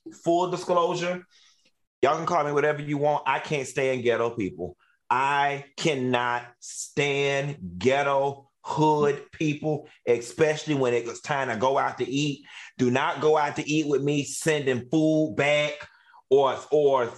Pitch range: 140-185 Hz